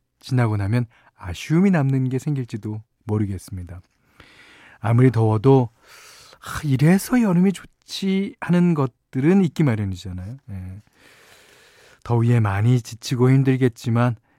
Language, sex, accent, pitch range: Korean, male, native, 110-155 Hz